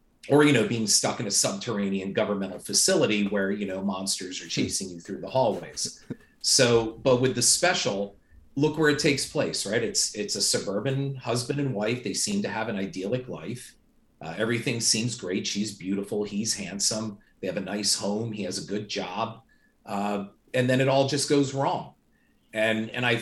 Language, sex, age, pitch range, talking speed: English, male, 40-59, 100-140 Hz, 190 wpm